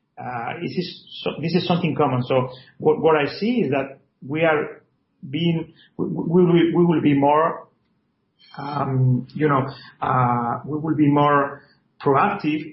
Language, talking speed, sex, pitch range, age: English, 155 wpm, male, 135-170 Hz, 40-59